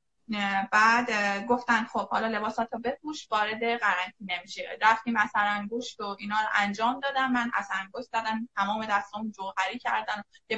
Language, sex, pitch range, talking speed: Persian, female, 200-245 Hz, 145 wpm